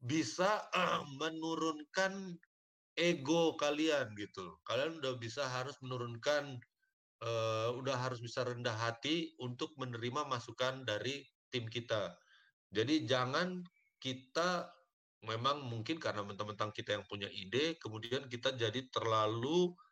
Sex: male